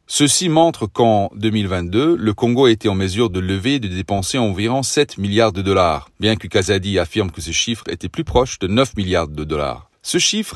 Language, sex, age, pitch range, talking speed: French, male, 40-59, 95-125 Hz, 210 wpm